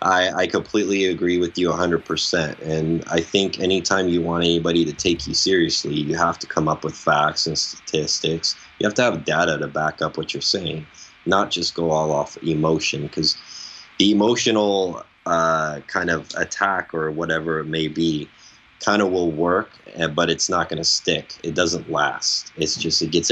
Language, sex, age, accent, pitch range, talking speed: English, male, 20-39, American, 80-85 Hz, 190 wpm